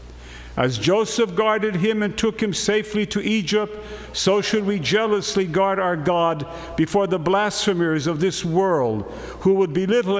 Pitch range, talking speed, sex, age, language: 160-210 Hz, 155 wpm, male, 50-69, English